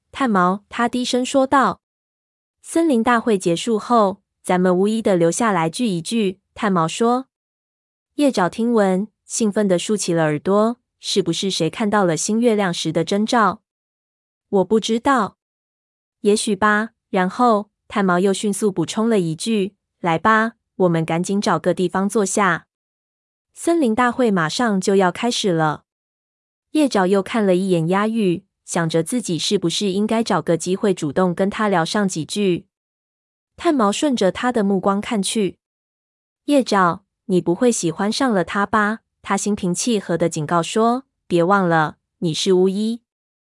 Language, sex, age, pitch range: Chinese, female, 20-39, 175-220 Hz